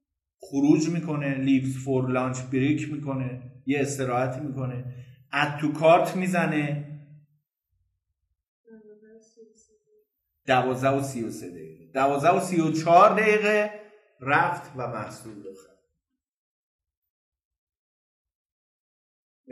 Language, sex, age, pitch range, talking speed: Persian, male, 50-69, 120-175 Hz, 90 wpm